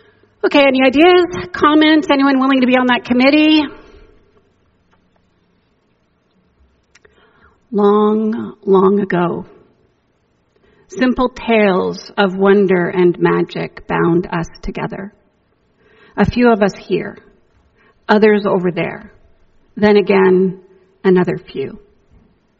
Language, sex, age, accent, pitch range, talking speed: English, female, 50-69, American, 180-220 Hz, 95 wpm